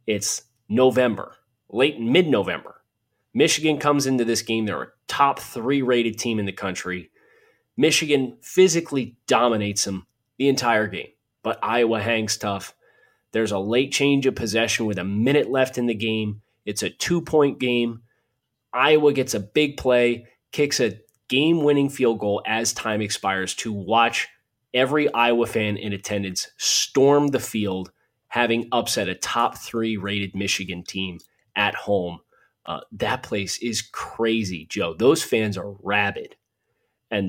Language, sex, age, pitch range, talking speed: English, male, 30-49, 100-125 Hz, 145 wpm